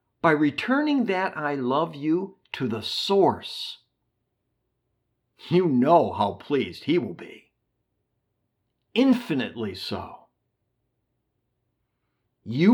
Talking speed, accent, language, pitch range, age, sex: 90 wpm, American, English, 115-165 Hz, 50-69, male